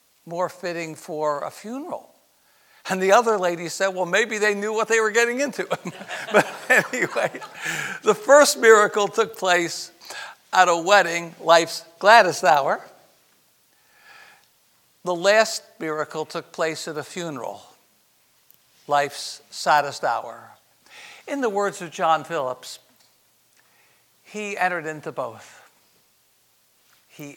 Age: 60-79